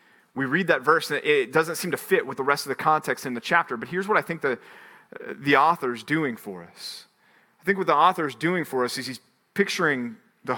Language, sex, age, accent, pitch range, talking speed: English, male, 40-59, American, 140-185 Hz, 250 wpm